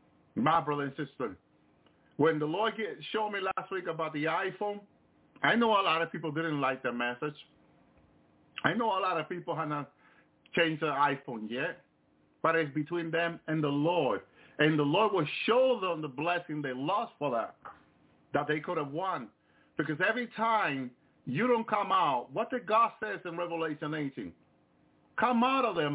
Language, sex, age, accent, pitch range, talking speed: English, male, 50-69, American, 130-195 Hz, 180 wpm